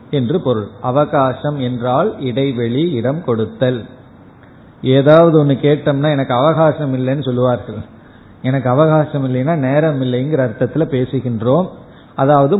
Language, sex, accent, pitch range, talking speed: Tamil, male, native, 125-165 Hz, 105 wpm